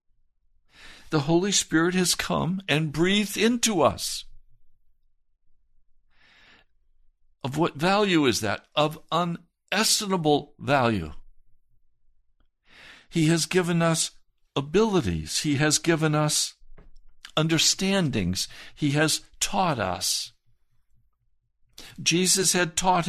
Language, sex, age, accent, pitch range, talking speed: English, male, 60-79, American, 115-180 Hz, 90 wpm